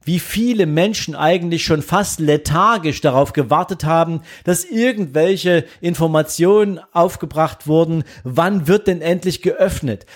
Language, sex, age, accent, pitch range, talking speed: German, male, 40-59, German, 145-185 Hz, 120 wpm